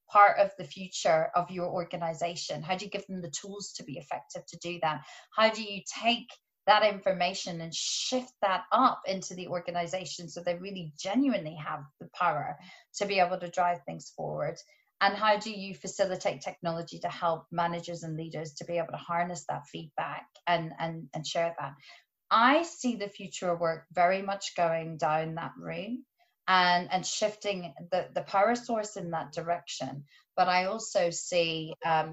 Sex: female